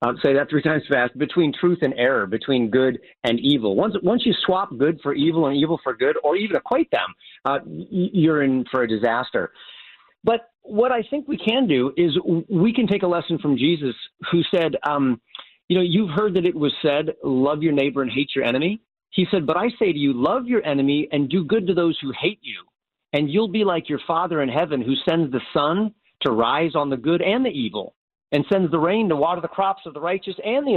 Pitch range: 145-205 Hz